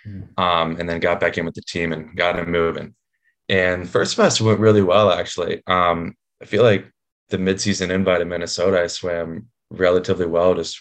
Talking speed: 190 wpm